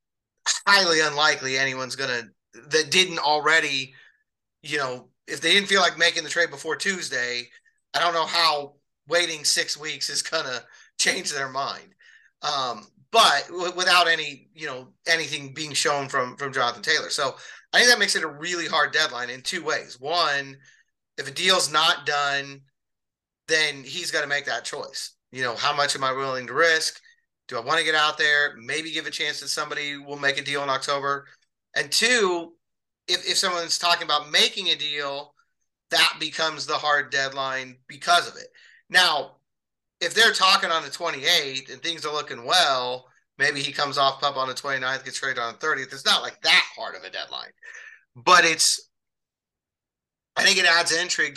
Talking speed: 185 wpm